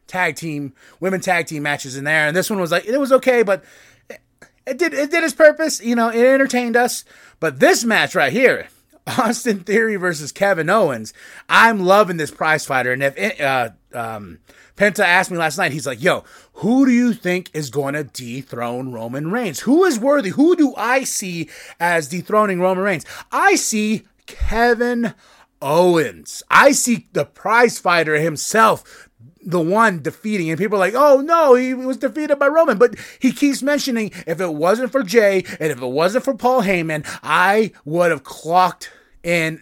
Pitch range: 160-245 Hz